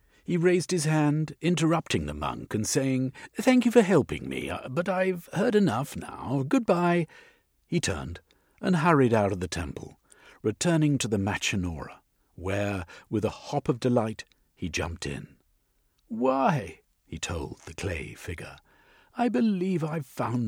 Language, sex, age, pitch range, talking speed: English, male, 50-69, 95-155 Hz, 150 wpm